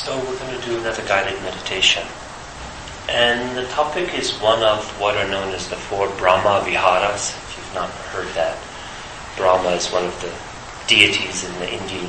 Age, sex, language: 30-49, male, English